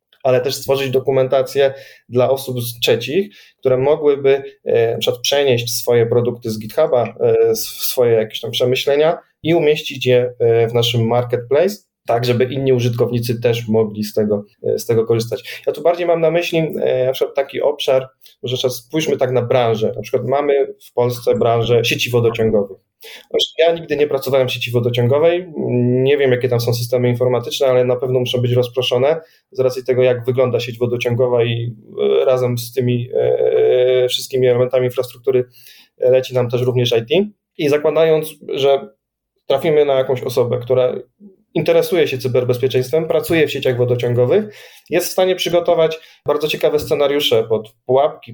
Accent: native